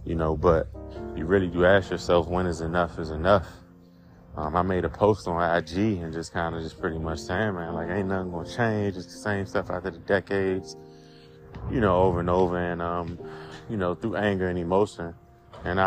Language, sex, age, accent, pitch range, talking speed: English, male, 20-39, American, 85-95 Hz, 210 wpm